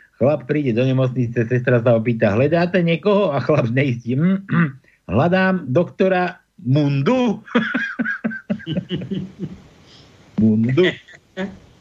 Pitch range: 140-210 Hz